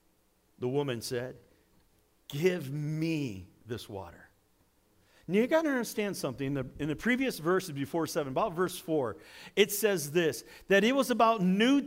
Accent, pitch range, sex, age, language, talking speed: American, 170-240 Hz, male, 50-69, English, 160 wpm